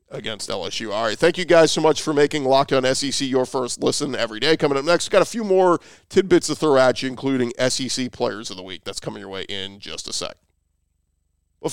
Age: 40-59